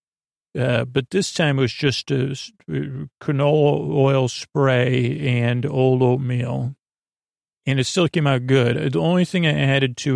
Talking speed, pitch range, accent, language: 155 wpm, 125-140 Hz, American, English